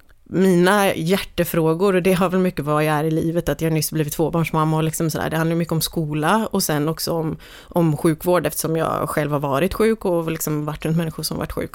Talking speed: 225 wpm